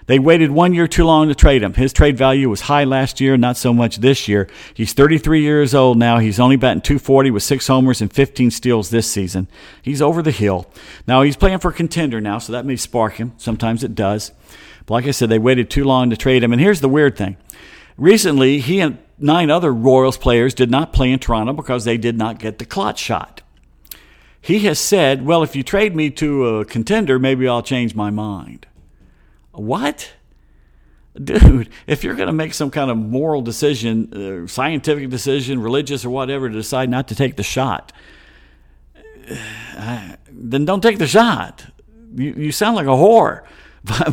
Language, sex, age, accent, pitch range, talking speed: English, male, 50-69, American, 110-145 Hz, 200 wpm